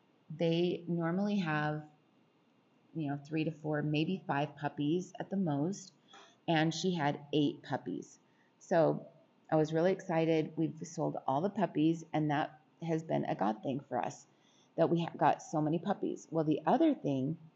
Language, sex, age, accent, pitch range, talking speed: English, female, 30-49, American, 150-180 Hz, 170 wpm